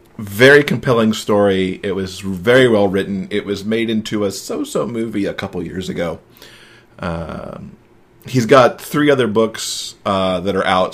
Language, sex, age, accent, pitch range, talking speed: English, male, 40-59, American, 95-110 Hz, 160 wpm